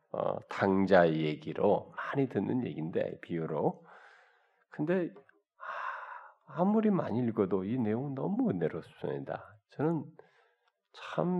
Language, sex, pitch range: Korean, male, 95-150 Hz